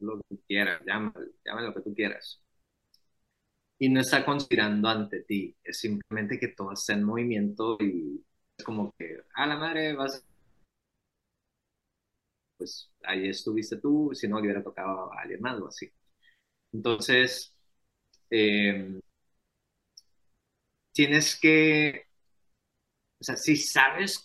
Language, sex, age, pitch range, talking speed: Spanish, male, 30-49, 105-140 Hz, 125 wpm